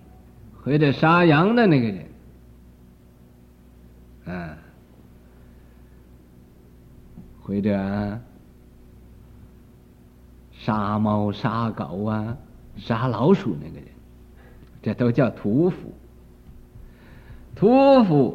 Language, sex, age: Chinese, male, 50-69